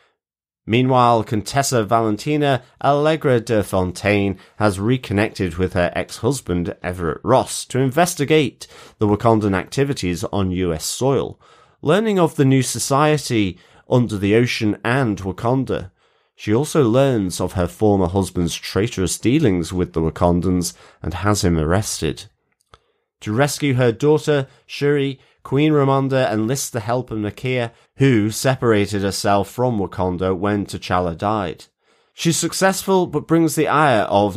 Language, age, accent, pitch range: English, 30-49, British, 95-130 Hz